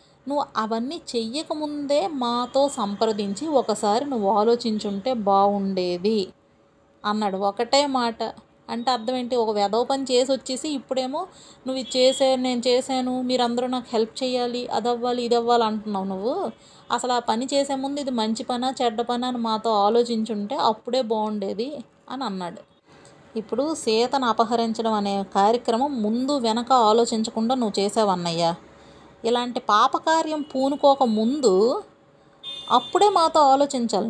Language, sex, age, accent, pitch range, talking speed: Telugu, female, 30-49, native, 215-270 Hz, 115 wpm